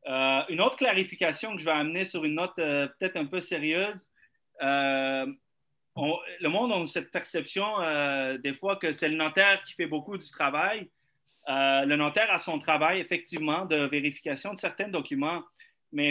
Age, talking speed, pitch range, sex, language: 30-49, 180 wpm, 155-215 Hz, male, French